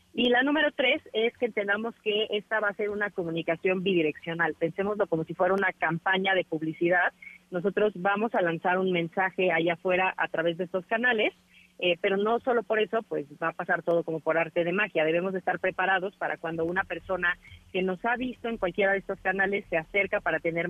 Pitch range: 165-195 Hz